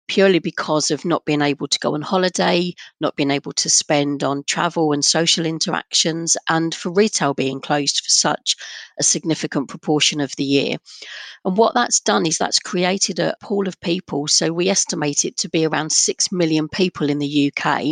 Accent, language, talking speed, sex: British, English, 190 wpm, female